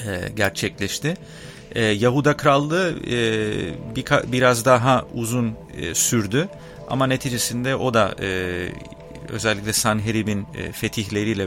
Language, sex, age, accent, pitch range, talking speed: English, male, 40-59, Turkish, 100-125 Hz, 75 wpm